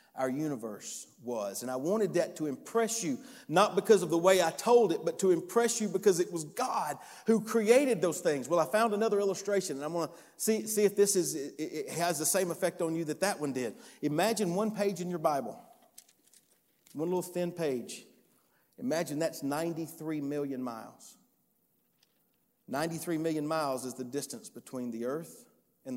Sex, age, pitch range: male, 50-69, 140-200 Hz